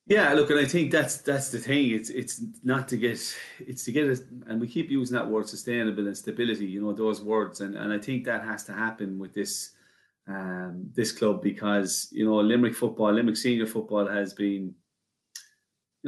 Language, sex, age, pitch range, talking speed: English, male, 30-49, 100-110 Hz, 205 wpm